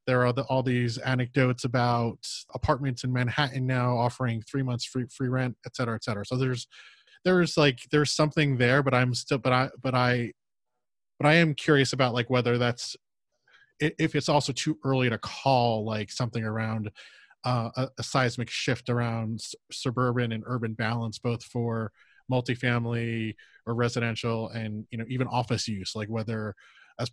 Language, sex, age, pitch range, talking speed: English, male, 20-39, 115-135 Hz, 170 wpm